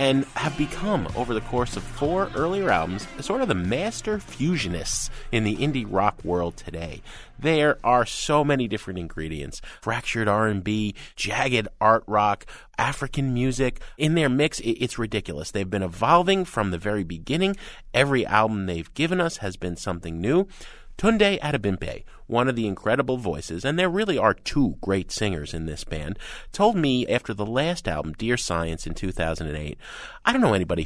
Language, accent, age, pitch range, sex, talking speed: English, American, 30-49, 95-145 Hz, male, 170 wpm